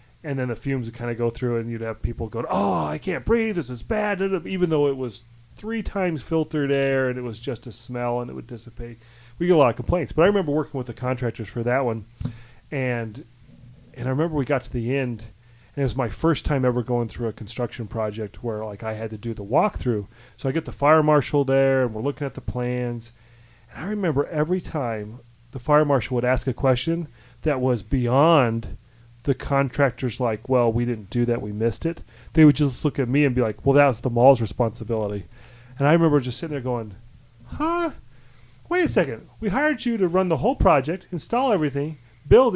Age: 30-49